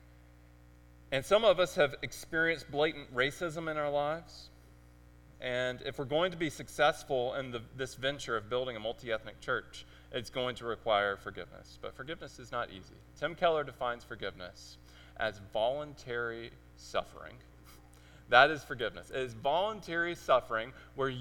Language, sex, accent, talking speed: English, male, American, 150 wpm